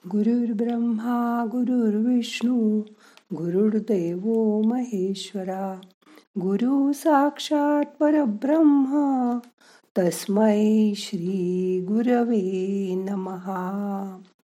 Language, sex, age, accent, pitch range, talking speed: Marathi, female, 50-69, native, 190-255 Hz, 50 wpm